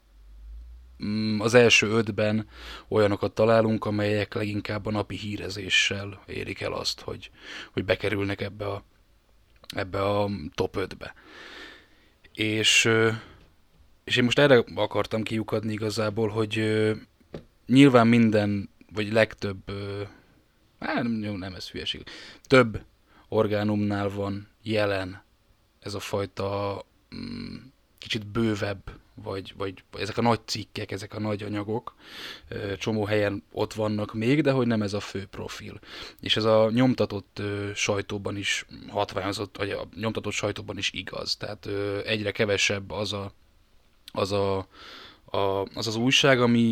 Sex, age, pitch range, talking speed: male, 10-29, 100-110 Hz, 120 wpm